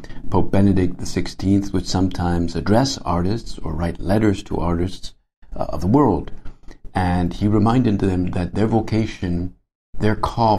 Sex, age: male, 50-69